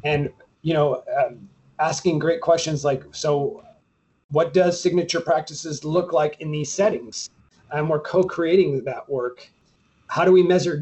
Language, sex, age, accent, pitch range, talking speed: English, male, 30-49, American, 135-175 Hz, 150 wpm